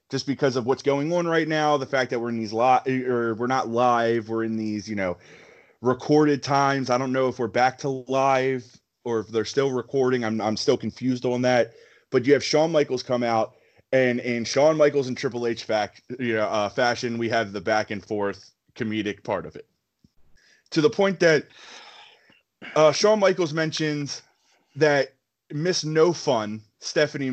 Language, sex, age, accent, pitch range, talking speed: English, male, 20-39, American, 110-150 Hz, 190 wpm